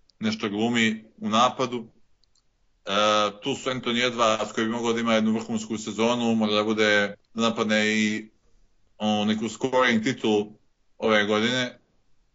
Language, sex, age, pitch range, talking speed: Croatian, male, 20-39, 110-120 Hz, 145 wpm